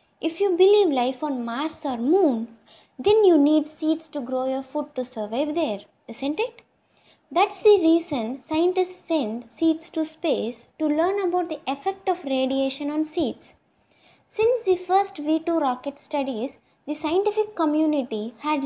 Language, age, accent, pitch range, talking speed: English, 20-39, Indian, 255-335 Hz, 155 wpm